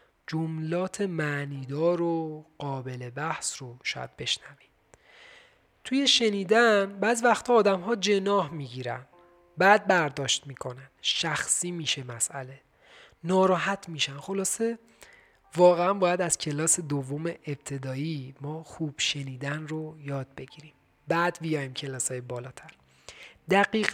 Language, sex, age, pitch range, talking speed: Persian, male, 40-59, 140-205 Hz, 105 wpm